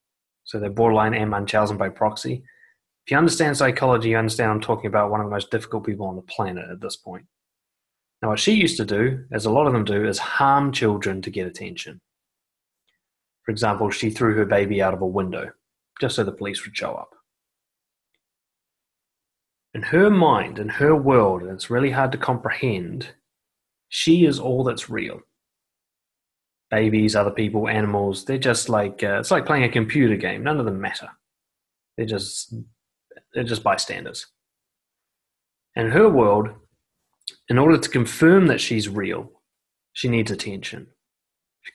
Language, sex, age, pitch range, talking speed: English, male, 20-39, 100-125 Hz, 165 wpm